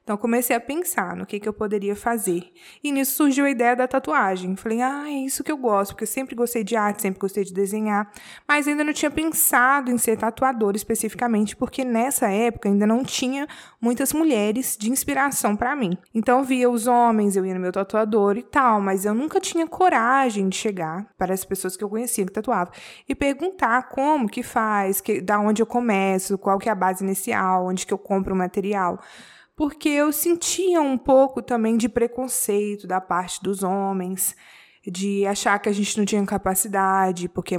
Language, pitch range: Portuguese, 195-250 Hz